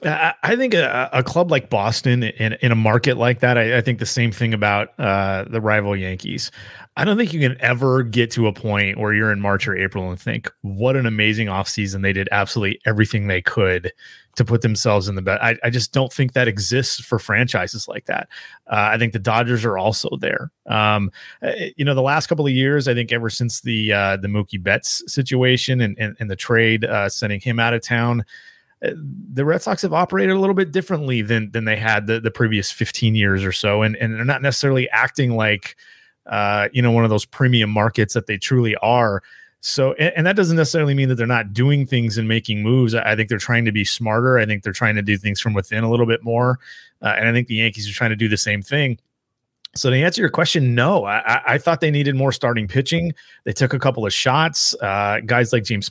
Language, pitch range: English, 105-130 Hz